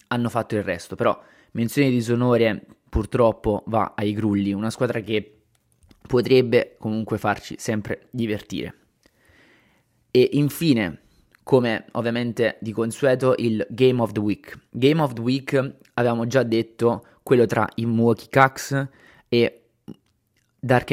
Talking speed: 130 wpm